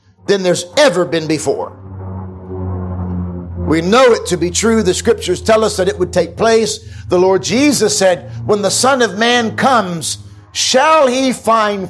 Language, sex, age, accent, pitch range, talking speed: English, male, 50-69, American, 170-270 Hz, 165 wpm